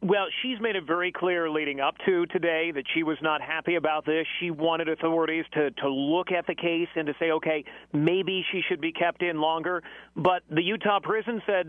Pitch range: 155-180 Hz